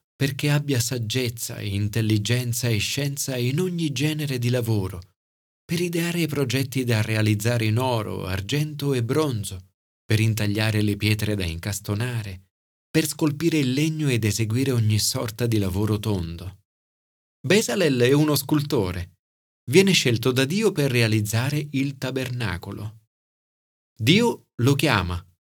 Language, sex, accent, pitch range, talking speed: Italian, male, native, 105-145 Hz, 125 wpm